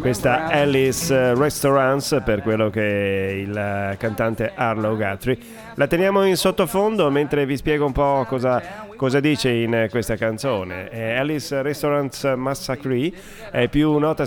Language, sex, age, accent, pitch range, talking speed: Italian, male, 30-49, native, 105-135 Hz, 130 wpm